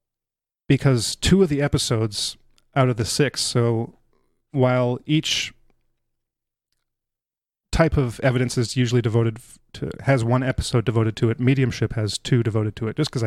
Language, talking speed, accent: English, 150 wpm, American